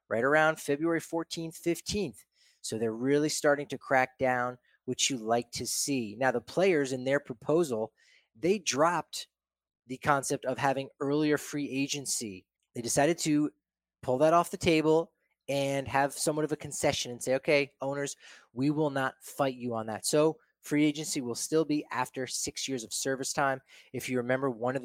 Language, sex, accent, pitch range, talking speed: English, male, American, 125-150 Hz, 180 wpm